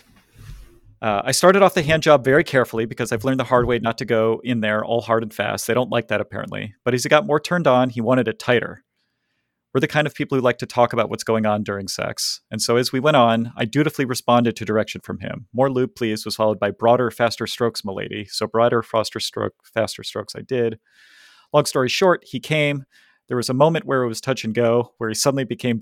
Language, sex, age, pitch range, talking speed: English, male, 30-49, 110-135 Hz, 235 wpm